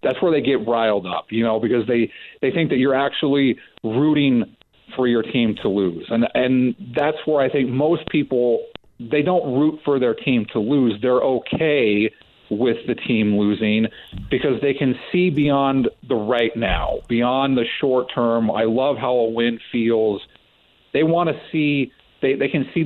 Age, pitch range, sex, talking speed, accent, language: 40-59, 115-140 Hz, male, 185 wpm, American, English